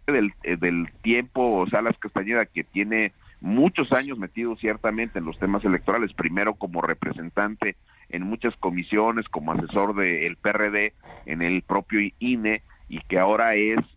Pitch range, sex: 90-110 Hz, male